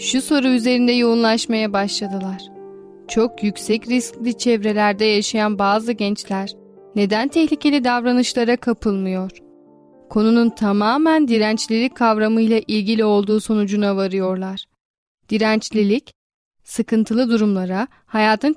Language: Turkish